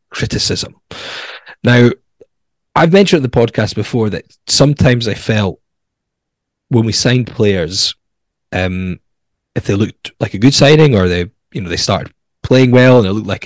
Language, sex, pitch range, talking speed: English, male, 95-125 Hz, 155 wpm